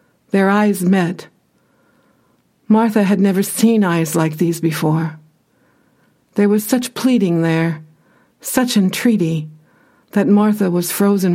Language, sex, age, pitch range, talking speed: English, female, 60-79, 170-215 Hz, 115 wpm